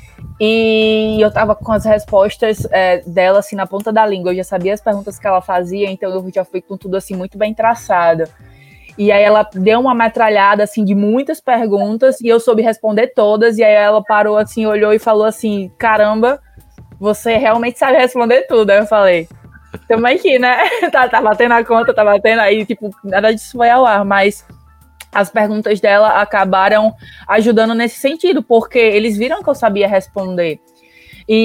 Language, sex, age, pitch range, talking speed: Portuguese, female, 20-39, 205-230 Hz, 175 wpm